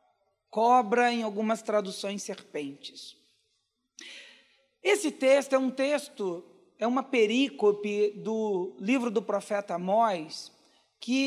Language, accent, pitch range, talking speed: Portuguese, Brazilian, 230-310 Hz, 100 wpm